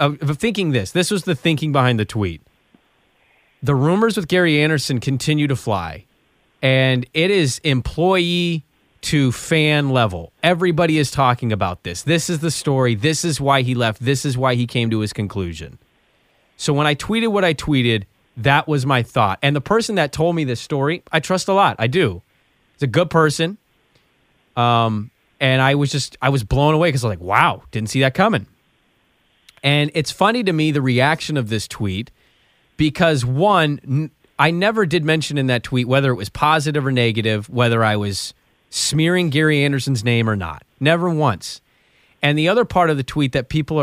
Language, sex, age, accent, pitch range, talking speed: English, male, 30-49, American, 120-165 Hz, 190 wpm